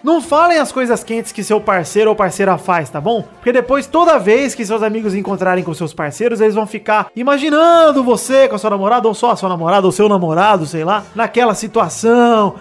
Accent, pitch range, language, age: Brazilian, 200-260 Hz, Portuguese, 20-39